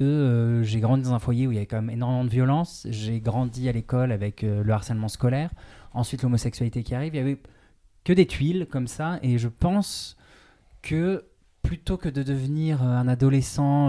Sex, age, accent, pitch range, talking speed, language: male, 20-39, French, 115-140 Hz, 200 wpm, French